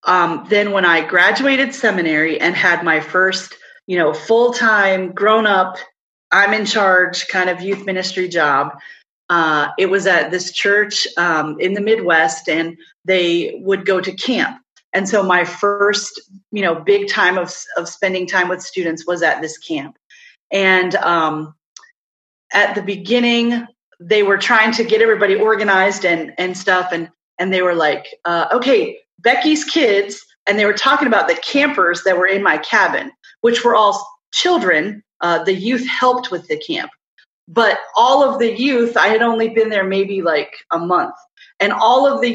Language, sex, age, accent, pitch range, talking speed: English, female, 30-49, American, 185-235 Hz, 175 wpm